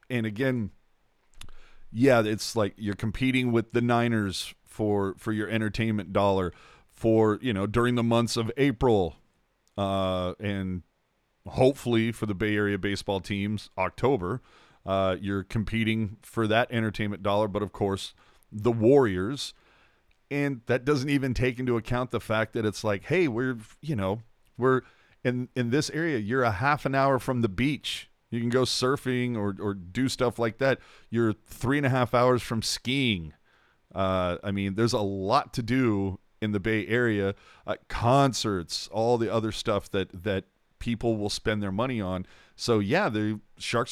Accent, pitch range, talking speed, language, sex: American, 100-120 Hz, 165 wpm, English, male